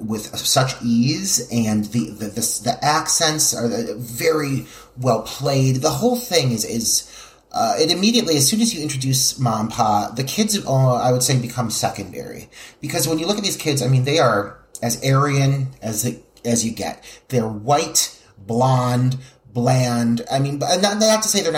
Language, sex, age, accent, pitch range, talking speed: English, male, 30-49, American, 115-150 Hz, 180 wpm